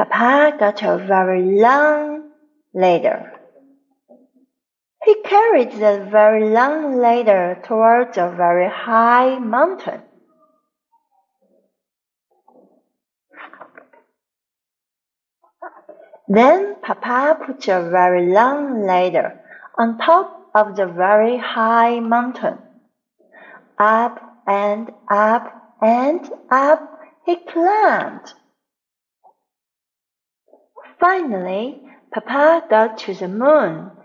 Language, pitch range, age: Chinese, 215-310 Hz, 40-59